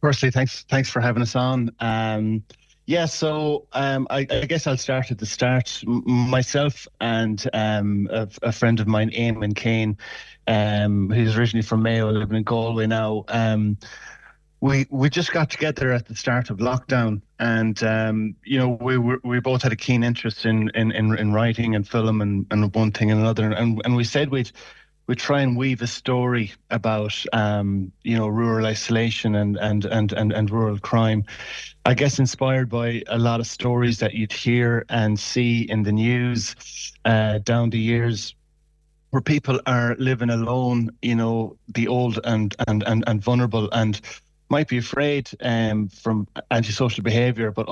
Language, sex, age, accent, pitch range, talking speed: English, male, 30-49, Irish, 110-125 Hz, 175 wpm